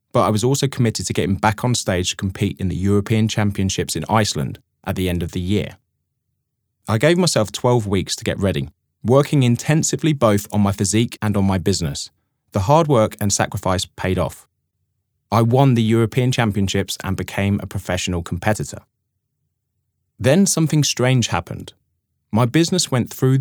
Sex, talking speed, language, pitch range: male, 170 wpm, English, 100-130 Hz